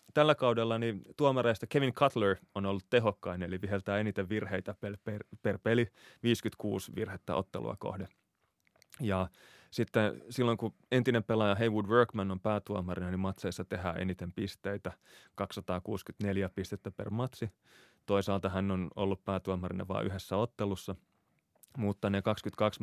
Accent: native